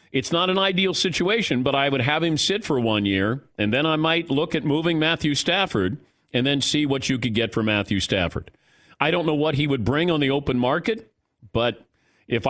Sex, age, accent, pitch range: male, 40-59, American, 105-150 Hz